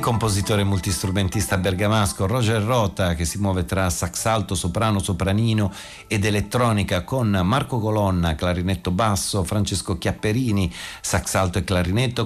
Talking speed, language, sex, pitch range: 125 wpm, Italian, male, 80-100 Hz